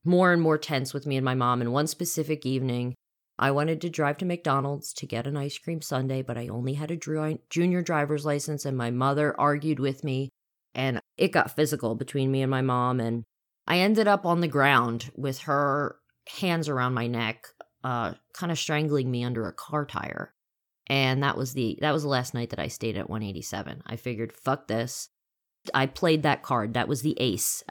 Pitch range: 125-150 Hz